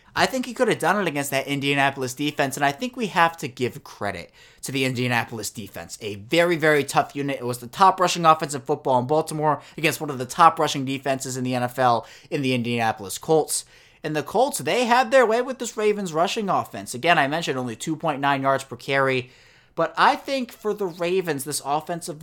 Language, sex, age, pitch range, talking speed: English, male, 30-49, 125-175 Hz, 210 wpm